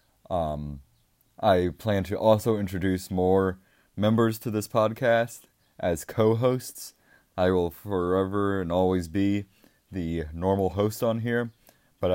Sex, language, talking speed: male, English, 125 wpm